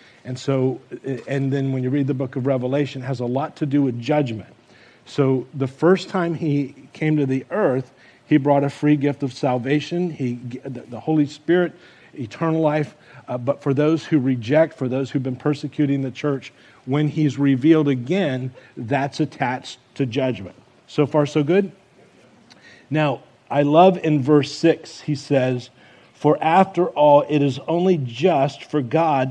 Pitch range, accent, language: 130-155 Hz, American, English